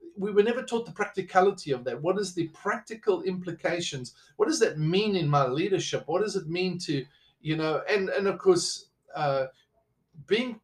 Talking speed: 185 wpm